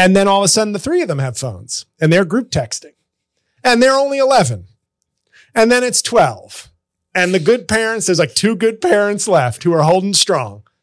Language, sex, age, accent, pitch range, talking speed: English, male, 30-49, American, 135-185 Hz, 210 wpm